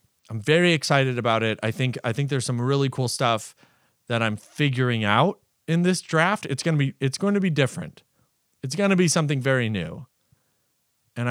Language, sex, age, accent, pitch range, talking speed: English, male, 40-59, American, 125-165 Hz, 200 wpm